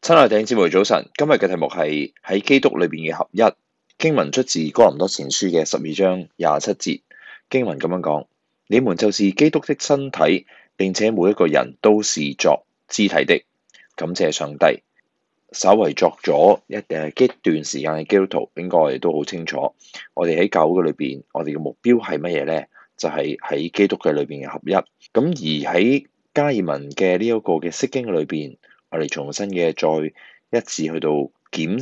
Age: 20-39